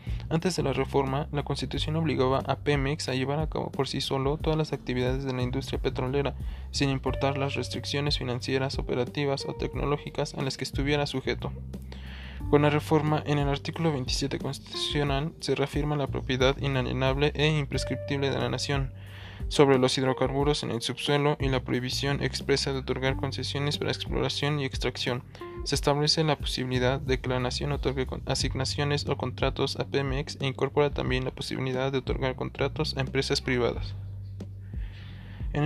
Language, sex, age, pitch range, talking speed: Spanish, male, 20-39, 125-145 Hz, 165 wpm